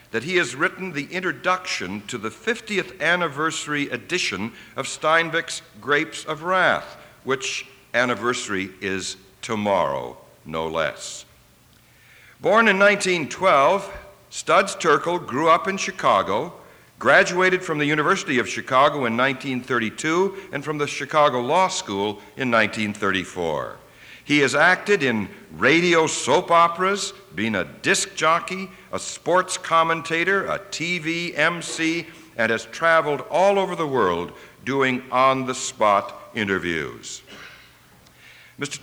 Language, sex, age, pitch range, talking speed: English, male, 60-79, 125-175 Hz, 115 wpm